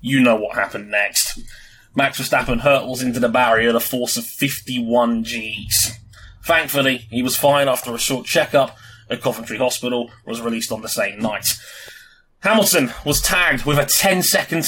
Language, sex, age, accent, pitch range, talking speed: English, male, 20-39, British, 115-140 Hz, 160 wpm